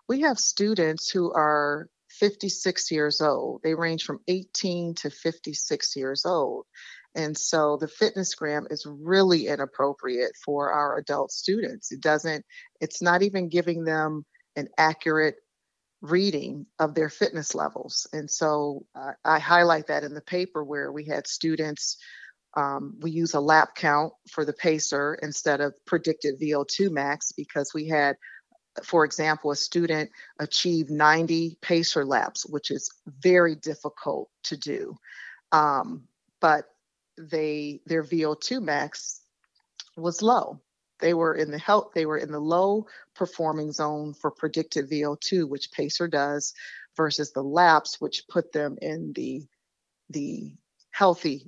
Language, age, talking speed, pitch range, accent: English, 40-59, 140 wpm, 150-170 Hz, American